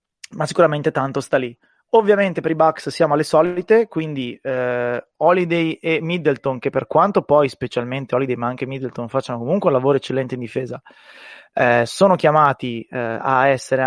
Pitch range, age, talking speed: 125-155 Hz, 20-39, 170 wpm